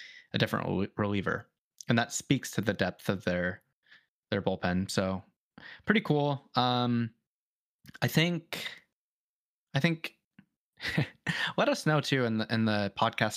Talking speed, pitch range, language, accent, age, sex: 135 wpm, 105-145 Hz, English, American, 20-39, male